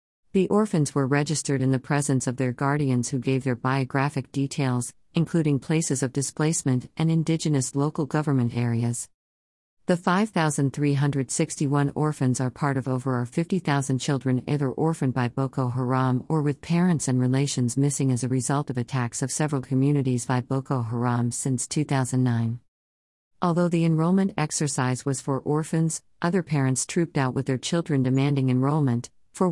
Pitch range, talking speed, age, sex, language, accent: 130-155 Hz, 165 wpm, 50-69, female, English, American